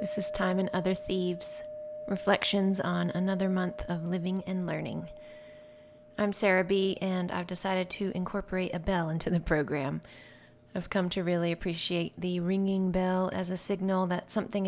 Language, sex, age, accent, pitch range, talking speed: English, female, 30-49, American, 175-195 Hz, 165 wpm